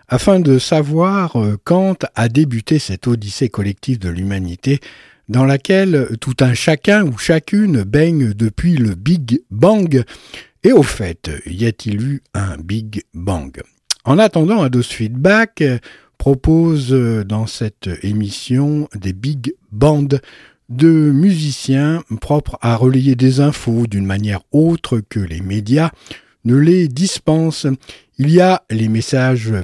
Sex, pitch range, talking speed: male, 110-155 Hz, 130 wpm